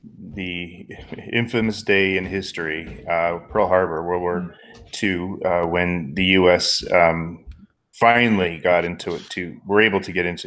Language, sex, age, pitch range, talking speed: English, male, 30-49, 90-100 Hz, 150 wpm